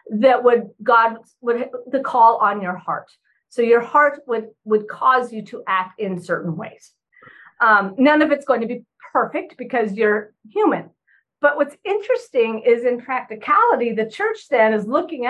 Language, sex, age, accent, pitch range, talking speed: English, female, 50-69, American, 230-305 Hz, 170 wpm